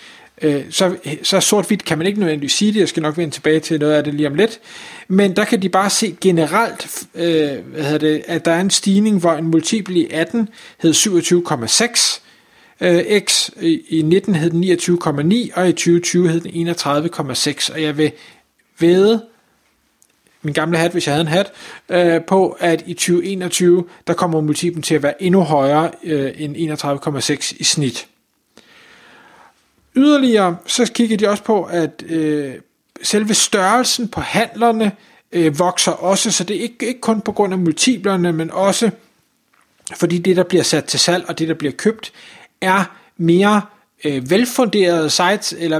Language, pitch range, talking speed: Danish, 165-210 Hz, 155 wpm